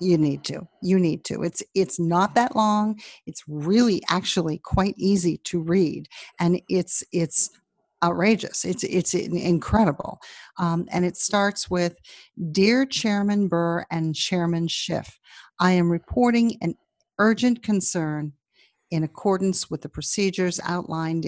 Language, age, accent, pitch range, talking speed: English, 50-69, American, 165-200 Hz, 135 wpm